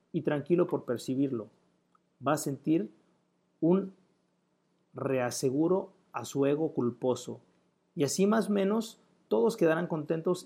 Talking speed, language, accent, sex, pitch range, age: 120 wpm, Spanish, Mexican, male, 125-165 Hz, 50-69